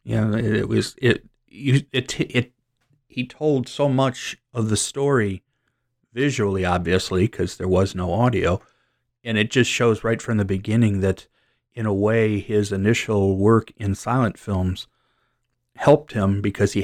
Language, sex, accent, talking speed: English, male, American, 155 wpm